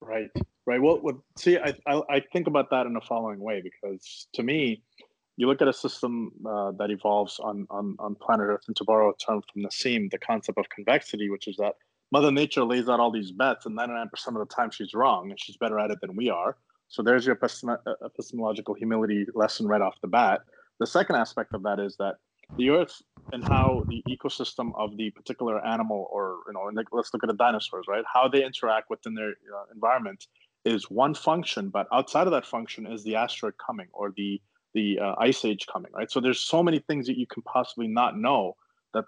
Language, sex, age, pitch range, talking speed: English, male, 30-49, 105-130 Hz, 215 wpm